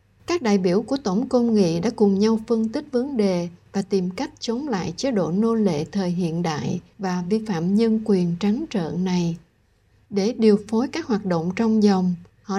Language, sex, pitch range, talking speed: Vietnamese, female, 185-240 Hz, 205 wpm